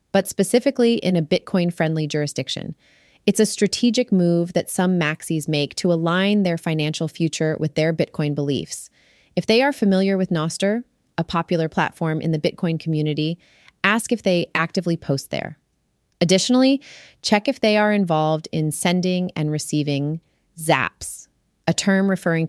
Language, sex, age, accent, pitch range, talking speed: English, female, 30-49, American, 155-200 Hz, 150 wpm